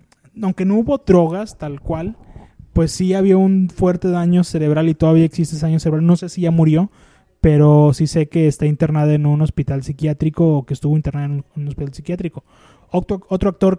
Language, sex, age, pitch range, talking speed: Spanish, male, 20-39, 150-180 Hz, 190 wpm